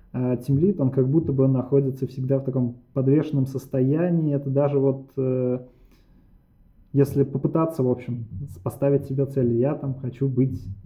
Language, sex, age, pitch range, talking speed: Russian, male, 20-39, 120-135 Hz, 145 wpm